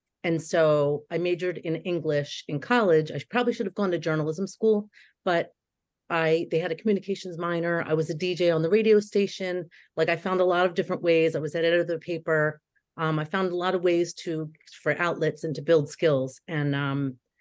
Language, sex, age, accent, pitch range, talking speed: English, female, 40-59, American, 155-185 Hz, 210 wpm